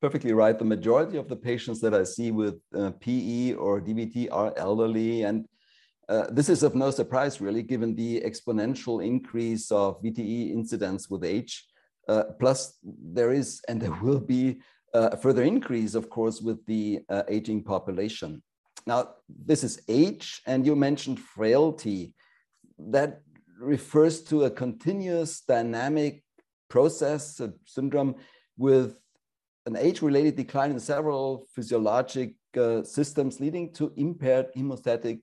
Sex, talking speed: male, 140 wpm